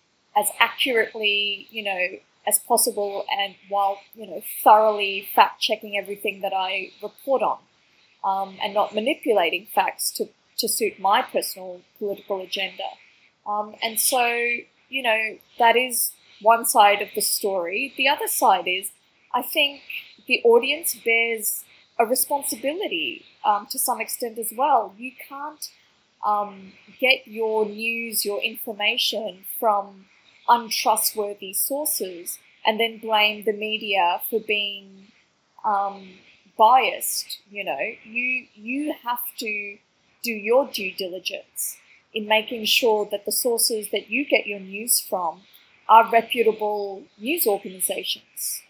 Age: 20-39